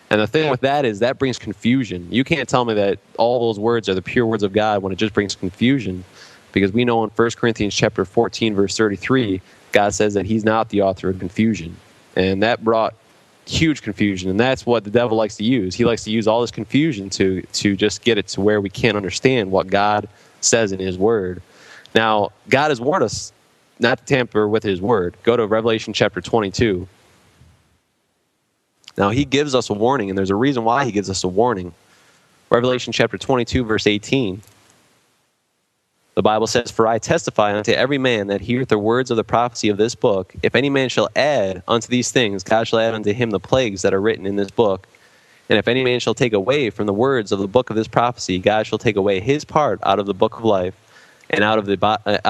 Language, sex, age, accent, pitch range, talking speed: English, male, 20-39, American, 100-120 Hz, 220 wpm